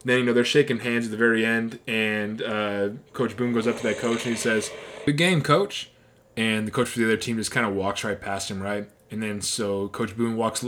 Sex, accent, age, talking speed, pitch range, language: male, American, 20-39, 260 wpm, 105-130 Hz, English